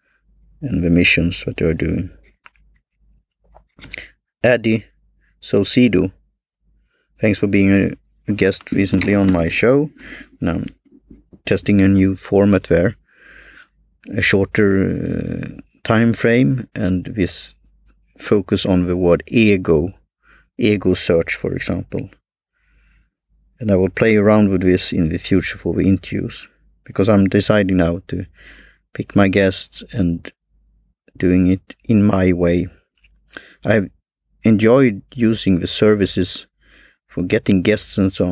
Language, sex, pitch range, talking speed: English, male, 90-105 Hz, 120 wpm